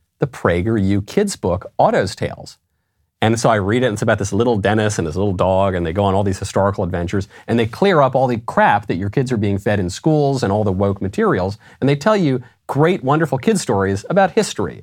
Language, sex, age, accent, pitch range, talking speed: English, male, 40-59, American, 95-135 Hz, 240 wpm